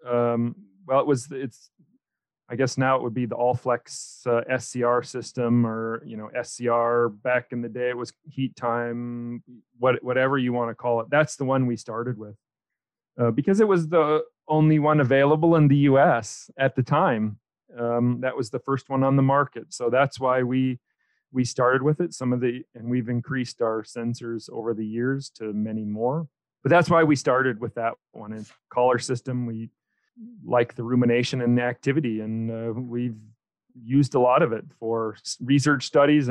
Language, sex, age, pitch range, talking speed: English, male, 40-59, 120-145 Hz, 190 wpm